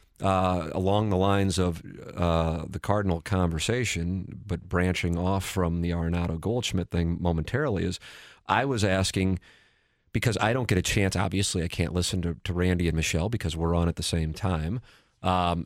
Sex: male